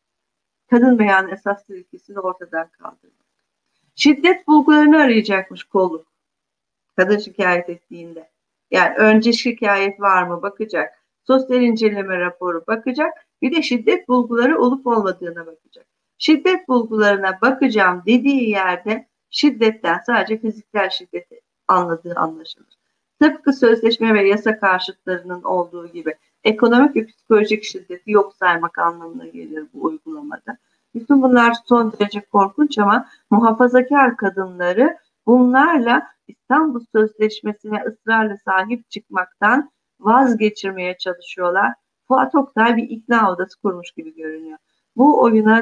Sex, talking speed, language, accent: female, 110 wpm, Turkish, native